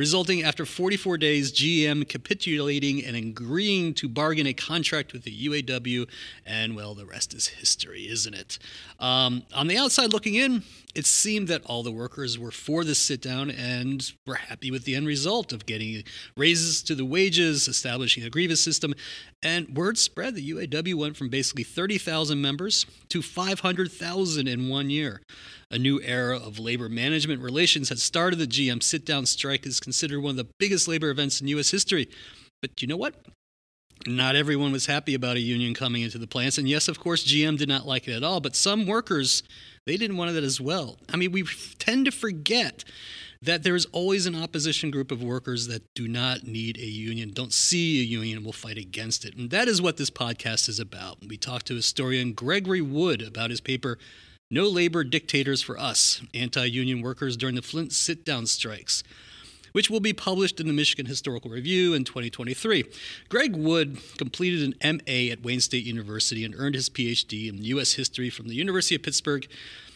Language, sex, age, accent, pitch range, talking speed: English, male, 30-49, American, 120-165 Hz, 190 wpm